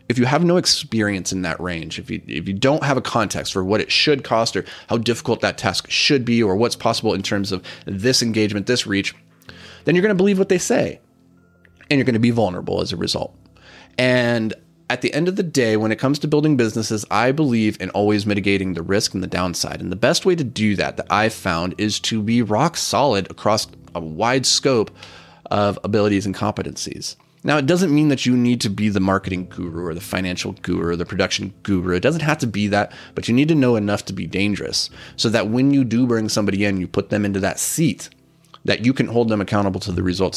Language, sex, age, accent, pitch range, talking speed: English, male, 30-49, American, 95-125 Hz, 240 wpm